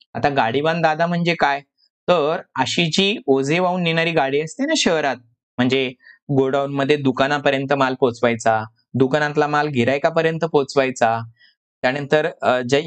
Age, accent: 20-39, native